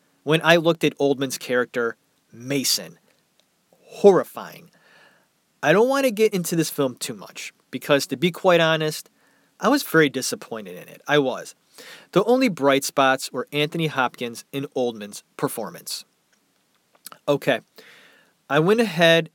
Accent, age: American, 30-49